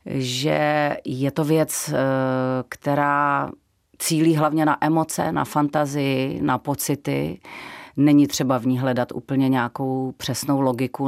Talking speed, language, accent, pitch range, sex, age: 120 wpm, Czech, native, 130-150 Hz, female, 30-49